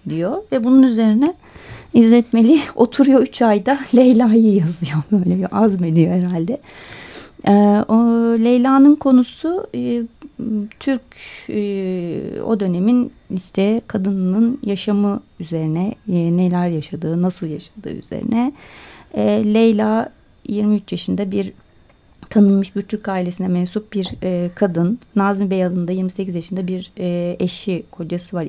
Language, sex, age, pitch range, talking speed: Turkish, female, 30-49, 180-225 Hz, 120 wpm